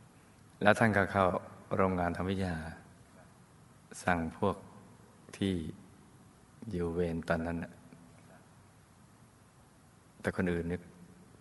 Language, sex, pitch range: Thai, male, 85-100 Hz